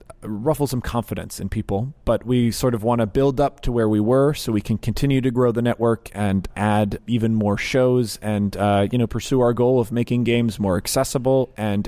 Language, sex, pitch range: English, male, 115-135 Hz